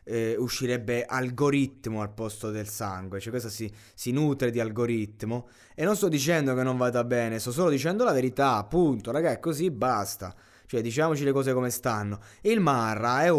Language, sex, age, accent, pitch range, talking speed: Italian, male, 20-39, native, 110-165 Hz, 180 wpm